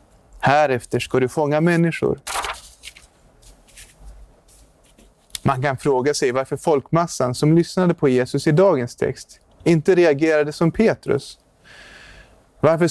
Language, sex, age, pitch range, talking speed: Swedish, male, 30-49, 130-165 Hz, 105 wpm